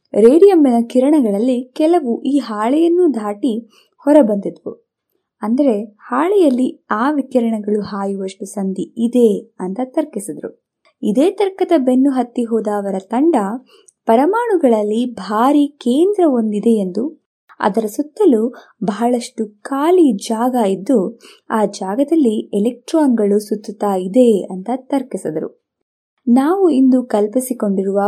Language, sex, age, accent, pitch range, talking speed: Kannada, female, 20-39, native, 220-295 Hz, 90 wpm